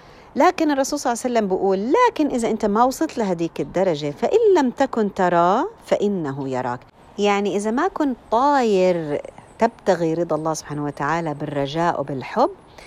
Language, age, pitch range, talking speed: Arabic, 50-69, 150-220 Hz, 150 wpm